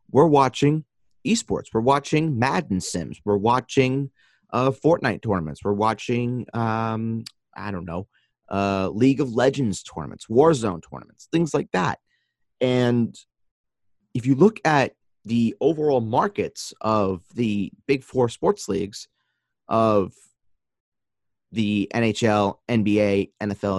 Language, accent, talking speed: English, American, 120 wpm